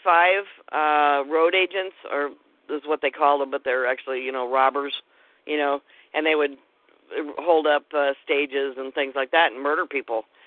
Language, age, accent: English, 50-69, American